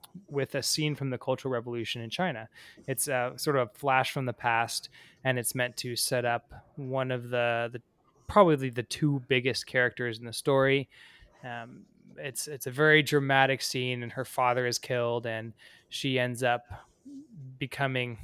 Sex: male